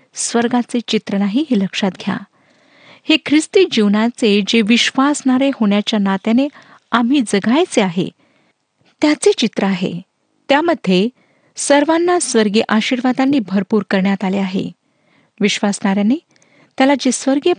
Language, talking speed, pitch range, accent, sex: Marathi, 105 wpm, 200-265 Hz, native, female